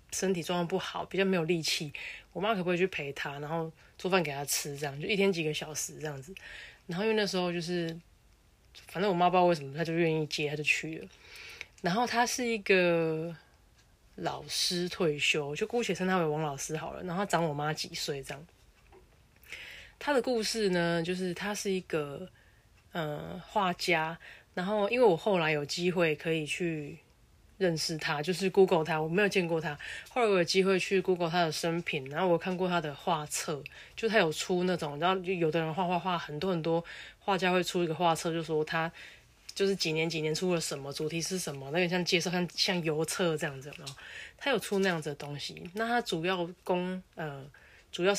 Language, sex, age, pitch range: Chinese, female, 20-39, 155-185 Hz